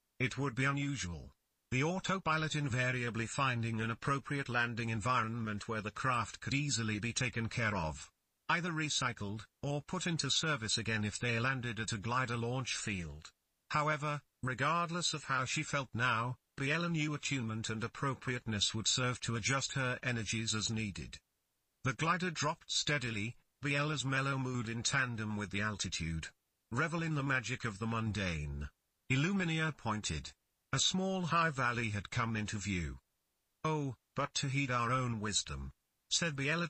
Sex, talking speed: male, 155 wpm